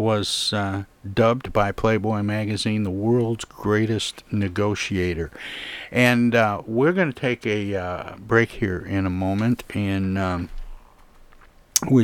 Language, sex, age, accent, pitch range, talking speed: English, male, 60-79, American, 95-110 Hz, 130 wpm